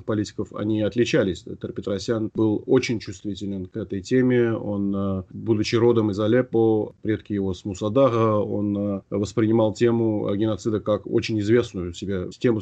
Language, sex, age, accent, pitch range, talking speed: Russian, male, 30-49, native, 100-115 Hz, 135 wpm